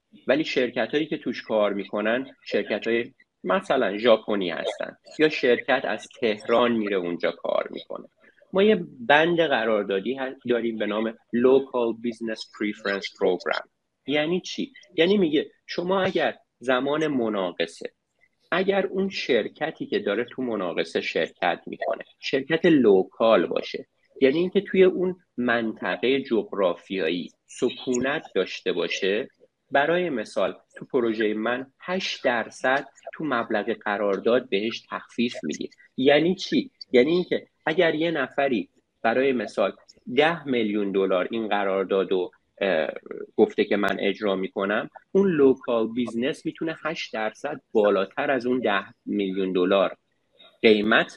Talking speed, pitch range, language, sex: 120 wpm, 110-175 Hz, Persian, male